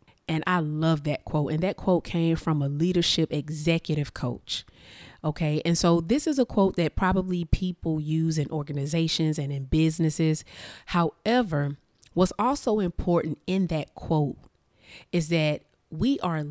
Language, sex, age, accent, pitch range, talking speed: English, female, 30-49, American, 155-205 Hz, 150 wpm